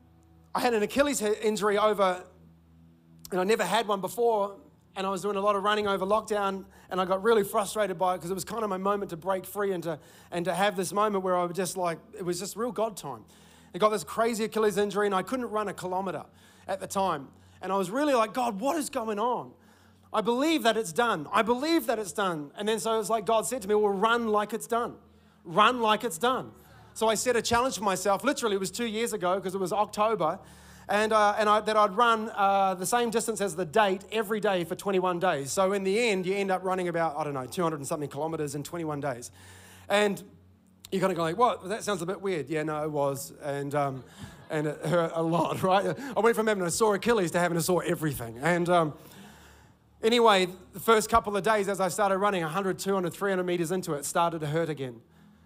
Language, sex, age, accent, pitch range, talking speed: English, male, 30-49, Australian, 170-215 Hz, 240 wpm